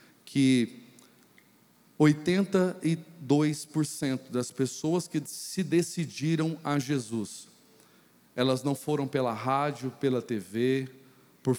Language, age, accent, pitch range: Portuguese, 40-59, Brazilian, 130-180 Hz